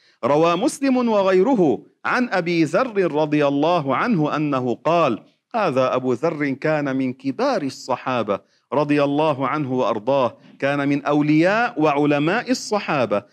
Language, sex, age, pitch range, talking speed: Arabic, male, 40-59, 140-180 Hz, 120 wpm